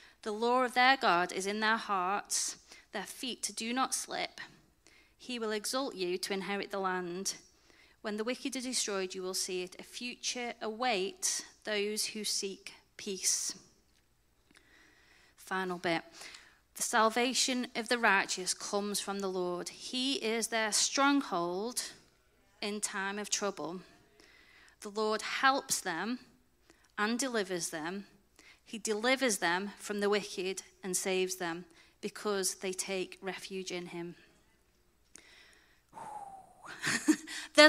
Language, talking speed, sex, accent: English, 125 wpm, female, British